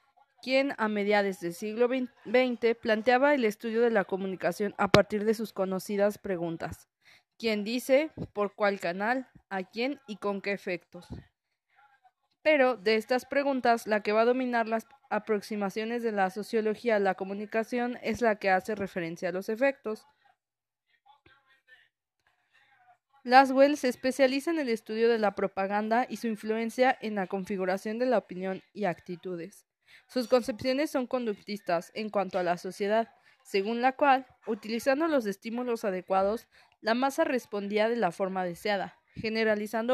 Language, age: Spanish, 20-39